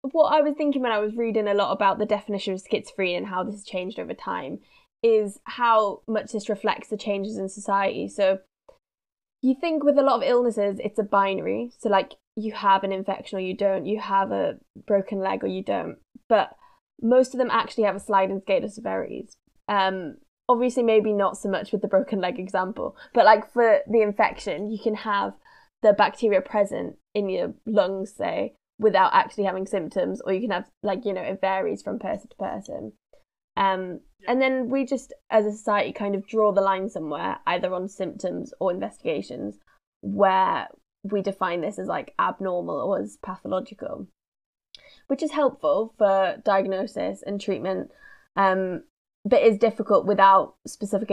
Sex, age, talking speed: female, 10-29, 180 wpm